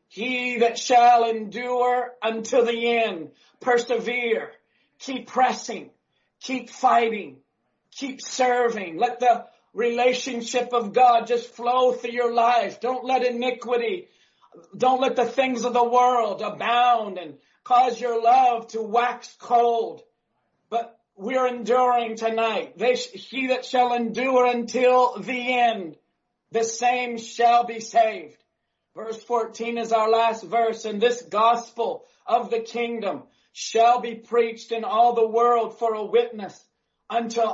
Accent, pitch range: American, 230-250 Hz